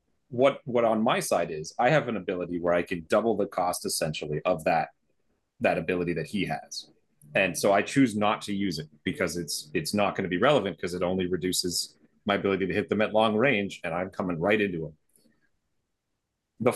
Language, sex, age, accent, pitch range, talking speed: English, male, 30-49, American, 90-115 Hz, 210 wpm